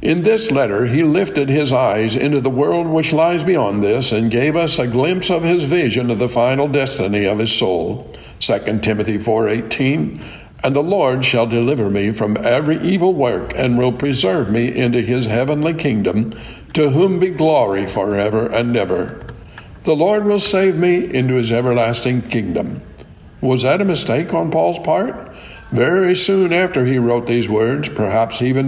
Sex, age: male, 60-79